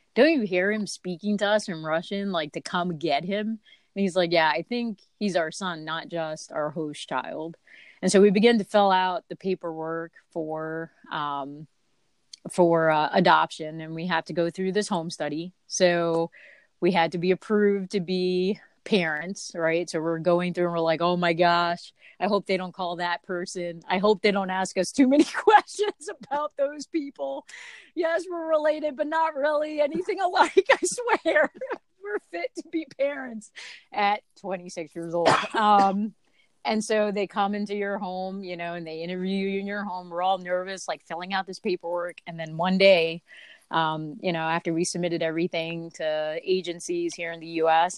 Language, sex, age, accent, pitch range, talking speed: English, female, 30-49, American, 170-220 Hz, 190 wpm